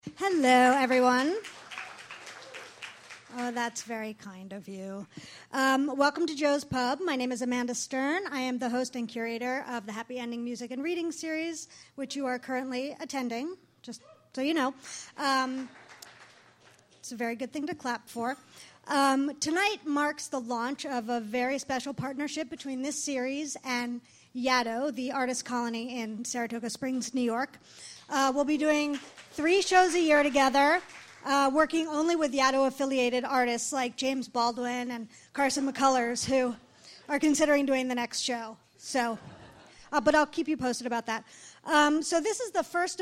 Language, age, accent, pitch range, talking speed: English, 40-59, American, 240-290 Hz, 160 wpm